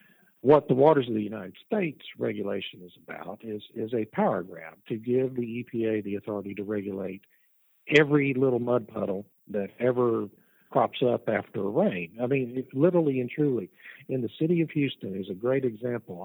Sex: male